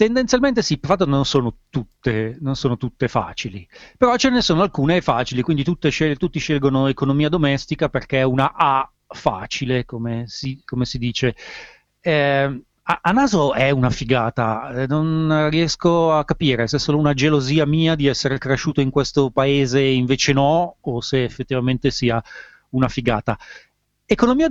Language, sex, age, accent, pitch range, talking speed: Italian, male, 30-49, native, 130-170 Hz, 150 wpm